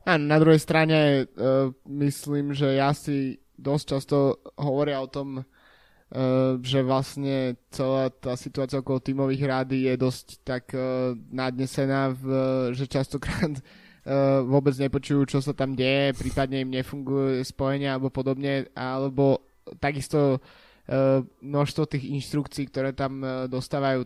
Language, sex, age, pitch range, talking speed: Slovak, male, 20-39, 130-145 Hz, 135 wpm